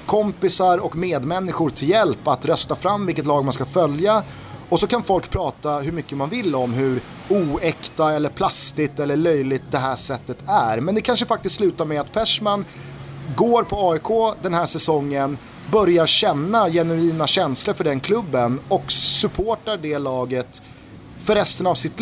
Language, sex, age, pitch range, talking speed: Swedish, male, 30-49, 135-175 Hz, 170 wpm